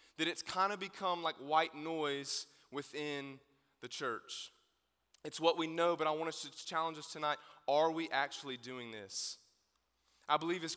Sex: male